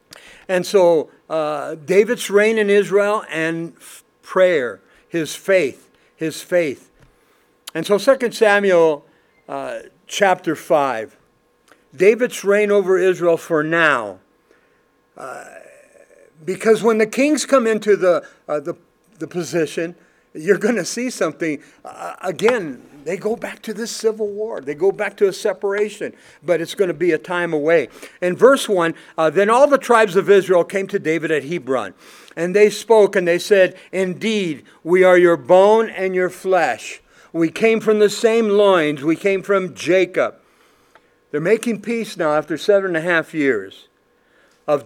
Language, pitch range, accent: English, 170-215 Hz, American